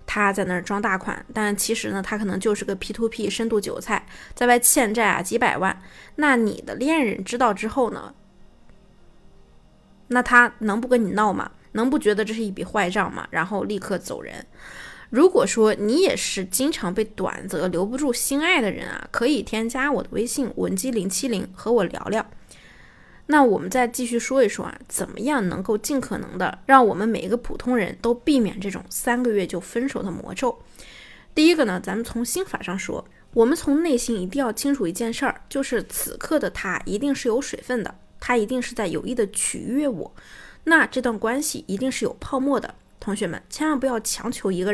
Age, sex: 20-39, female